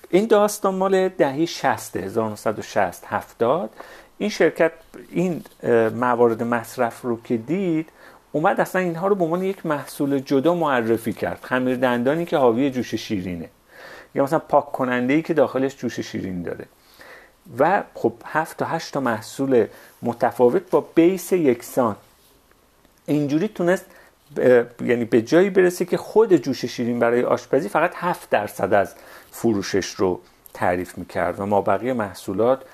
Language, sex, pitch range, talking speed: Persian, male, 110-160 Hz, 140 wpm